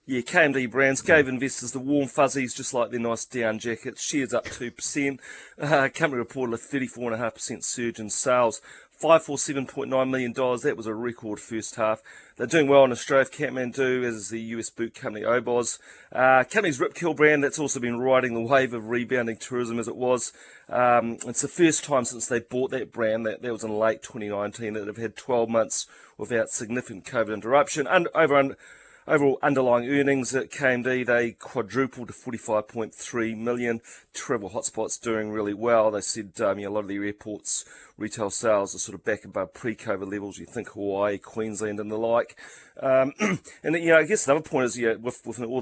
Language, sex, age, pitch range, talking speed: English, male, 30-49, 110-135 Hz, 190 wpm